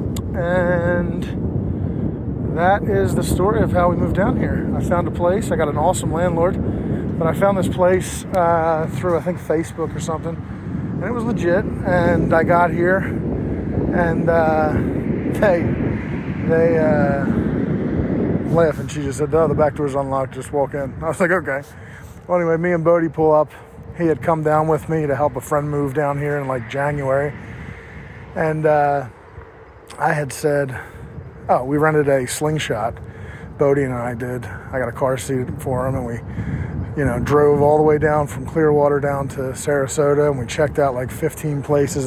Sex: male